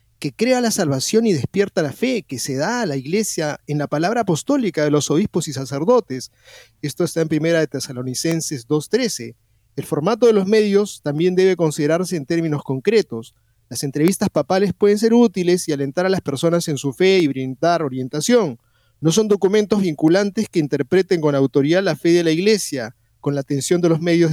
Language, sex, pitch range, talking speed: Spanish, male, 145-195 Hz, 190 wpm